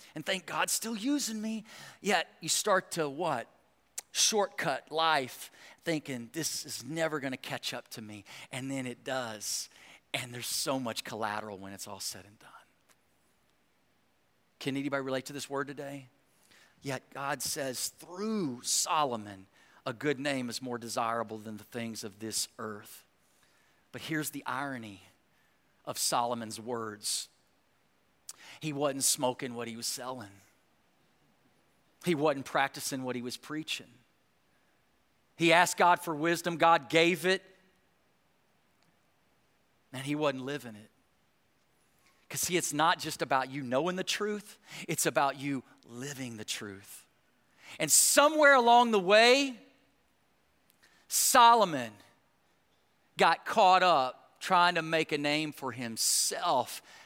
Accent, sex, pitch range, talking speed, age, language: American, male, 120-165 Hz, 135 wpm, 40-59, English